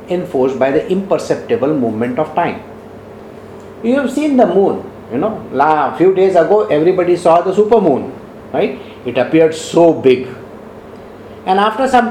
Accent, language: Indian, English